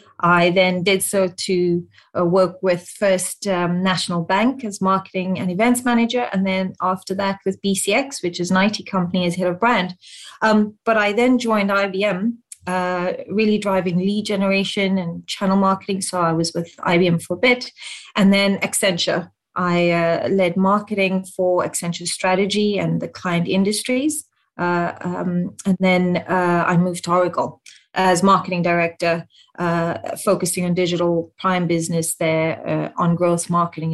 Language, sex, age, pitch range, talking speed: English, female, 30-49, 180-210 Hz, 160 wpm